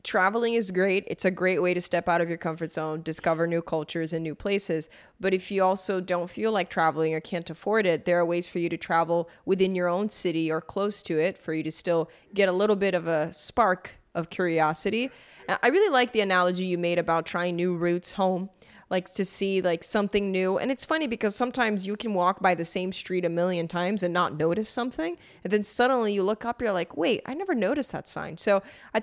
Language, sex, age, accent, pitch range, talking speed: English, female, 20-39, American, 175-210 Hz, 235 wpm